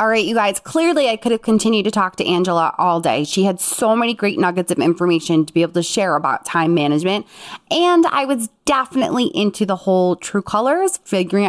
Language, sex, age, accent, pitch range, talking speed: English, female, 20-39, American, 205-280 Hz, 215 wpm